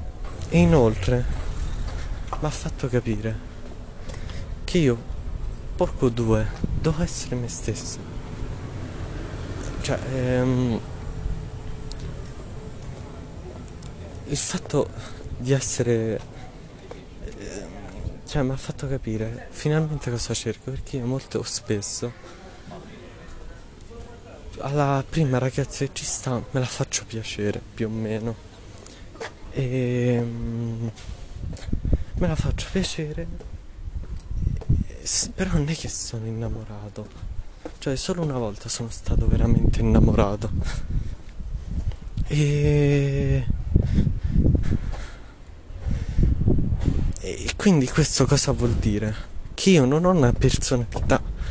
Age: 20-39